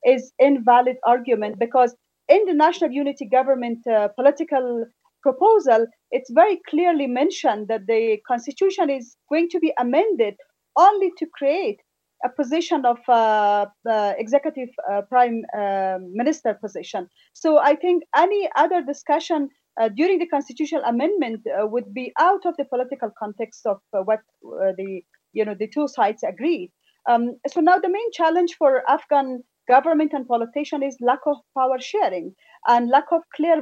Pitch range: 230-310 Hz